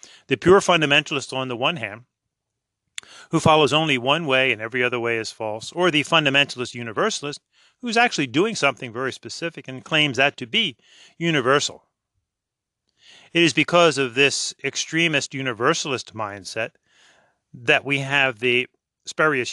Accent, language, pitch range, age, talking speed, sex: American, English, 120-155 Hz, 40-59, 145 wpm, male